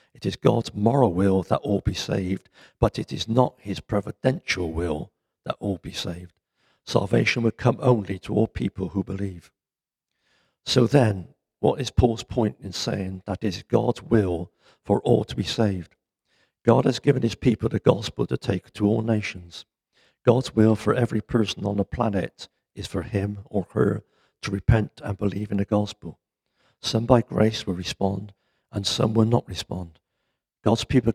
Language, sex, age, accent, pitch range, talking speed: English, male, 60-79, British, 95-115 Hz, 175 wpm